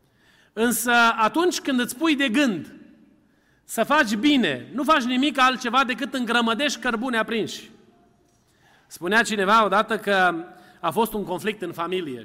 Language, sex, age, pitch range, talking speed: Romanian, male, 30-49, 205-305 Hz, 135 wpm